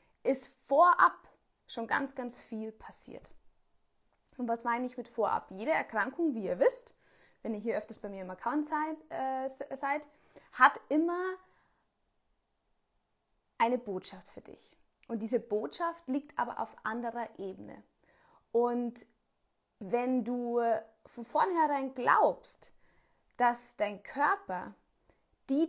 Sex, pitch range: female, 220-295 Hz